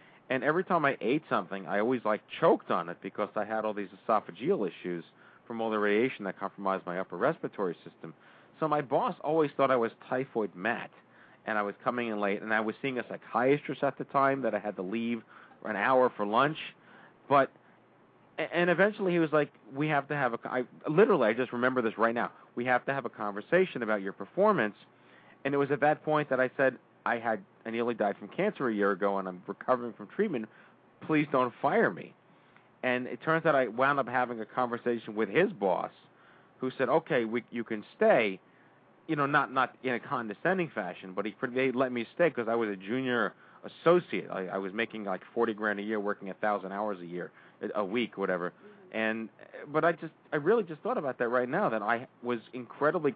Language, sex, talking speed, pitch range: English, male, 215 wpm, 105-135 Hz